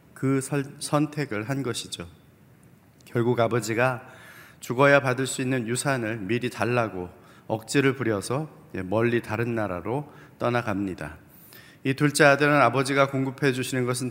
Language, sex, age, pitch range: Korean, male, 30-49, 120-140 Hz